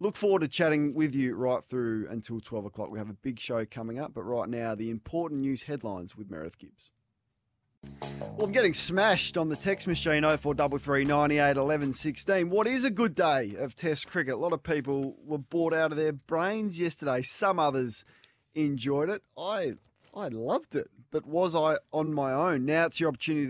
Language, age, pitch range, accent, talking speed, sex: English, 20-39, 115-150 Hz, Australian, 190 wpm, male